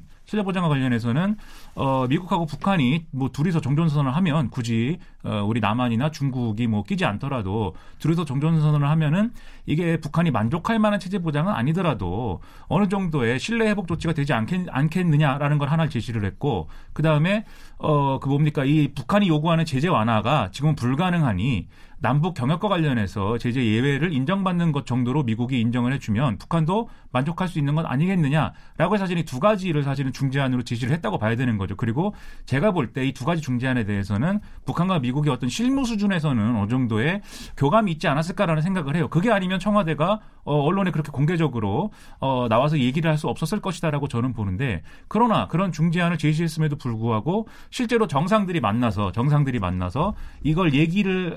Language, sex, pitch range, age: Korean, male, 125-180 Hz, 30-49